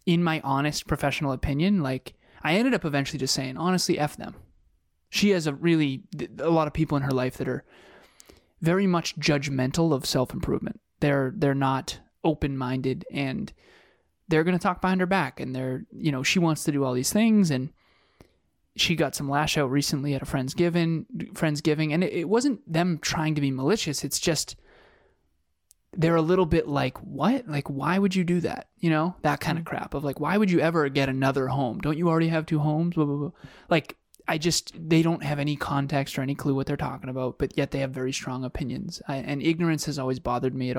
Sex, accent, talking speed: male, American, 215 wpm